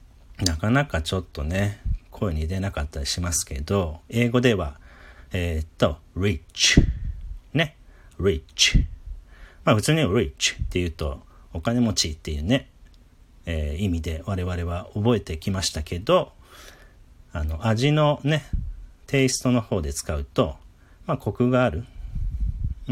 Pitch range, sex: 80-110 Hz, male